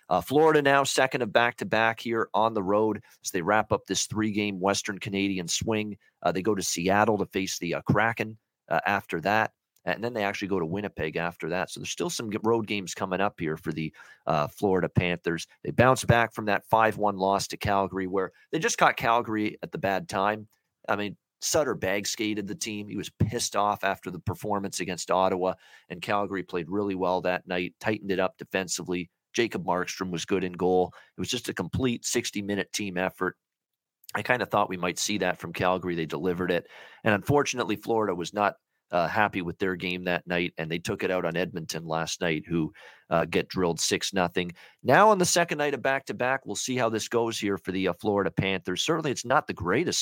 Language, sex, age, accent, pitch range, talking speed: English, male, 40-59, American, 90-110 Hz, 210 wpm